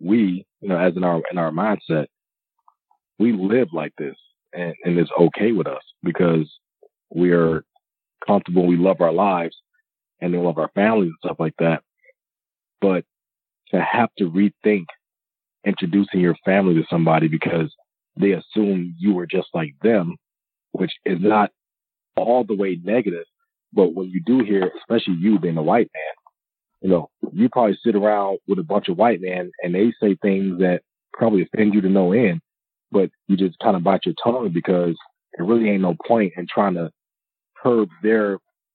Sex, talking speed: male, 175 wpm